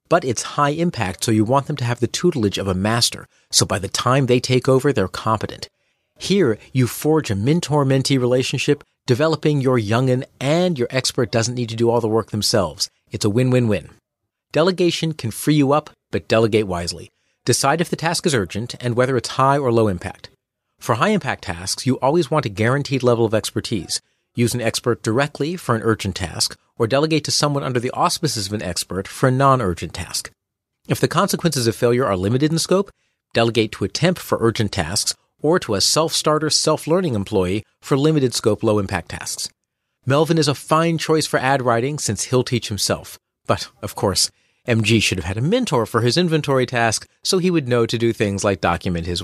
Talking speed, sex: 195 wpm, male